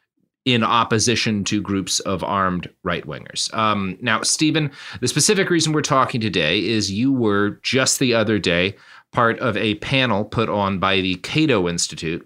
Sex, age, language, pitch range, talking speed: male, 30-49, English, 95-120 Hz, 155 wpm